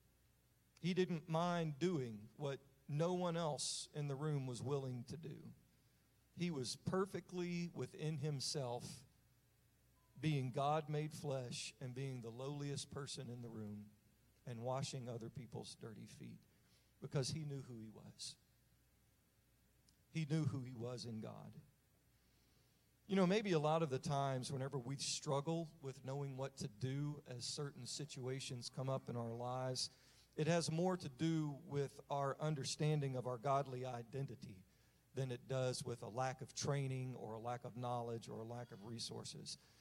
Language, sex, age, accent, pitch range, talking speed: English, male, 50-69, American, 125-160 Hz, 155 wpm